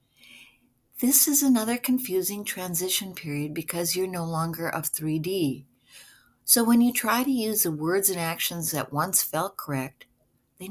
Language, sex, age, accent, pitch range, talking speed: English, female, 60-79, American, 155-220 Hz, 150 wpm